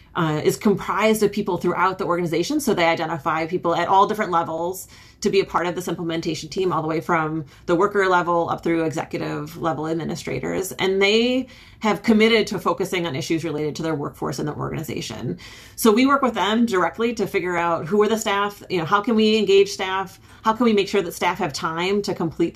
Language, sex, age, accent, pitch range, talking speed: English, female, 30-49, American, 165-215 Hz, 220 wpm